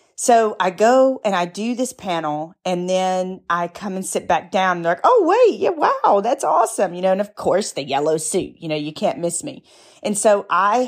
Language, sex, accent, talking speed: English, female, American, 225 wpm